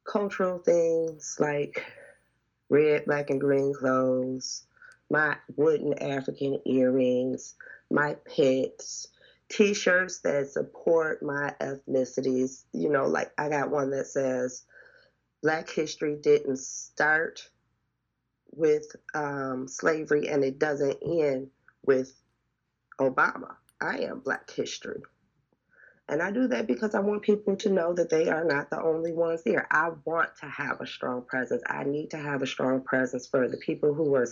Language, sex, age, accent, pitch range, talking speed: English, female, 30-49, American, 135-195 Hz, 140 wpm